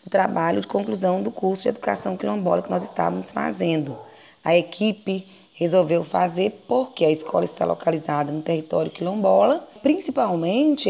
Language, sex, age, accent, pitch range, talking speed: Portuguese, female, 20-39, Brazilian, 180-250 Hz, 145 wpm